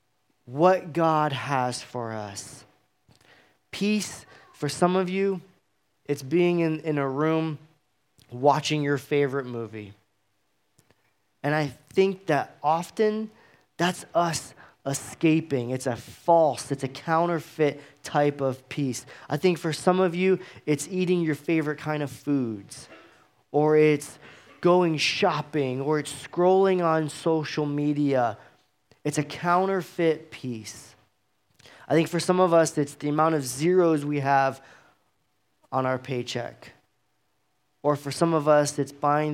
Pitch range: 130-160 Hz